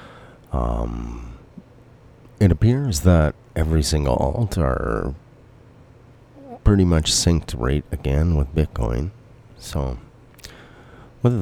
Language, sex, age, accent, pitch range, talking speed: English, male, 40-59, American, 80-120 Hz, 90 wpm